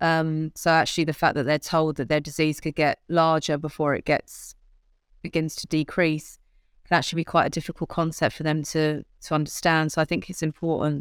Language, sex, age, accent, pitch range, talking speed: English, female, 30-49, British, 150-165 Hz, 200 wpm